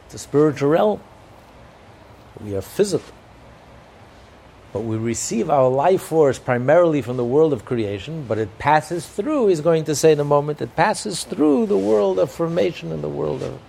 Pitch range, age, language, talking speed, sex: 110-155 Hz, 60-79, English, 180 wpm, male